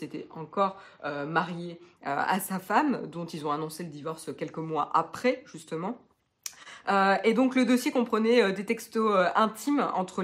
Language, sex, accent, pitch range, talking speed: French, female, French, 165-225 Hz, 175 wpm